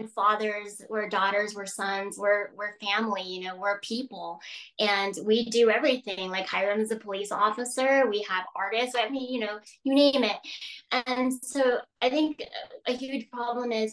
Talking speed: 175 wpm